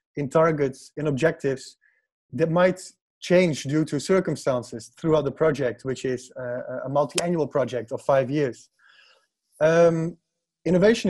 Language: English